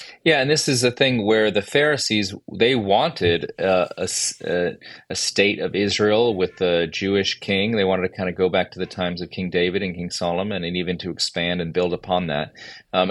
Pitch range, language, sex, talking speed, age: 95-125 Hz, English, male, 210 wpm, 30-49